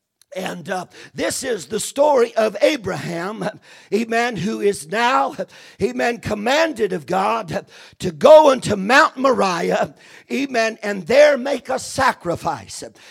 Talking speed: 125 wpm